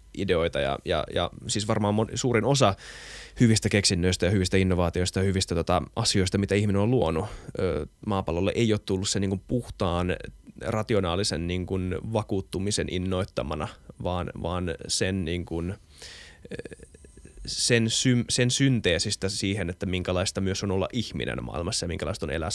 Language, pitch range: Finnish, 95-115 Hz